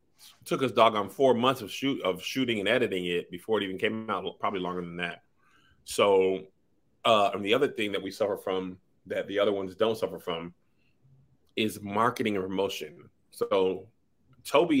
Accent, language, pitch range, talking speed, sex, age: American, English, 95-120 Hz, 180 wpm, male, 30-49